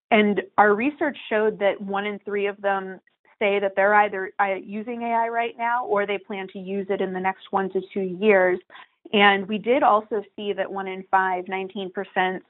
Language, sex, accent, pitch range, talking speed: English, female, American, 190-210 Hz, 195 wpm